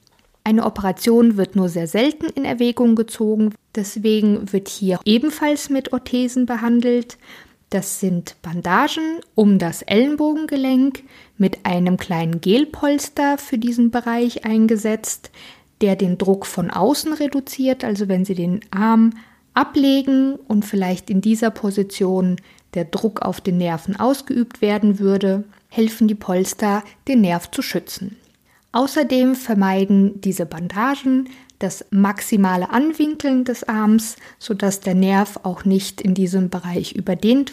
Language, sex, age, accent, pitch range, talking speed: German, female, 50-69, German, 195-245 Hz, 130 wpm